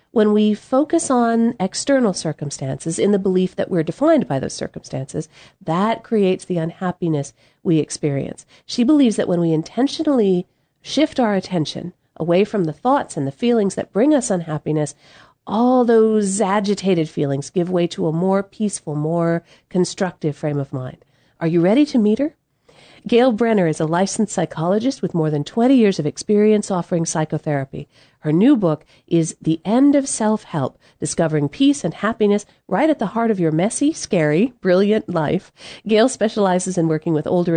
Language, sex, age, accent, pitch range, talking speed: English, female, 40-59, American, 155-215 Hz, 170 wpm